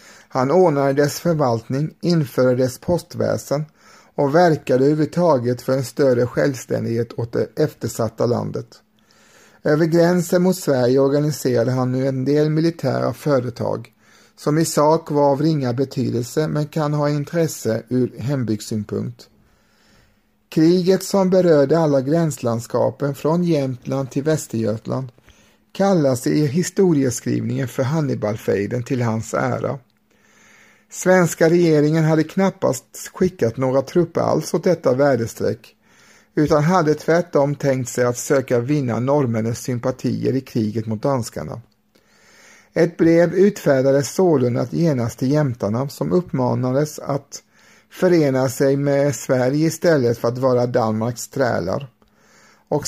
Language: Swedish